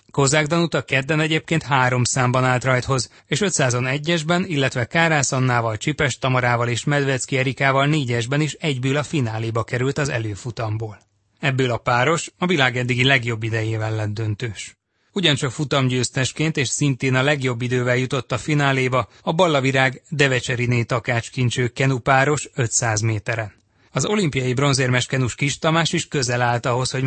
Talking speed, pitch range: 135 wpm, 120-140 Hz